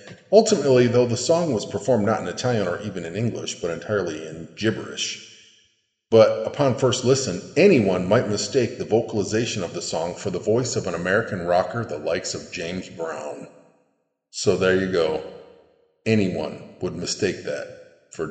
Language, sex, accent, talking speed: English, male, American, 165 wpm